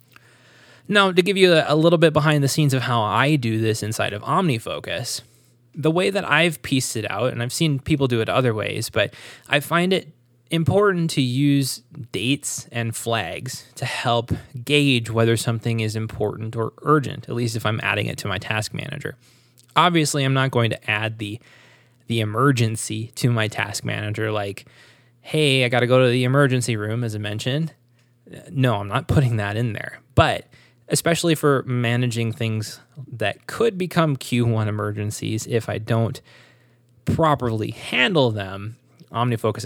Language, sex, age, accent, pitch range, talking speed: English, male, 20-39, American, 115-140 Hz, 170 wpm